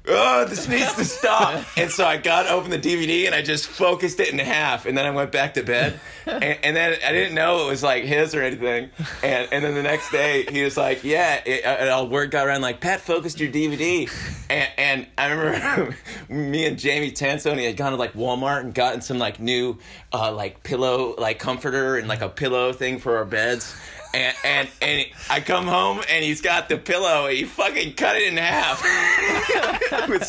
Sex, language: male, English